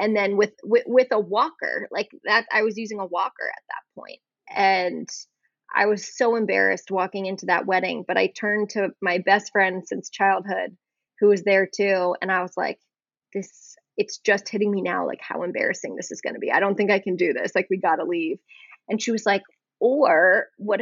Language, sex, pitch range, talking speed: English, female, 195-225 Hz, 215 wpm